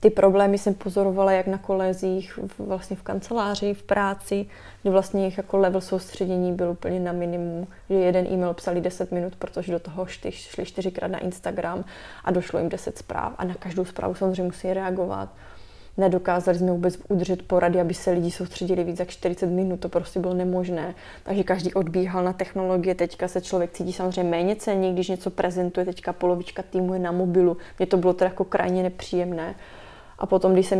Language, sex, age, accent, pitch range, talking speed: Czech, female, 20-39, native, 180-190 Hz, 185 wpm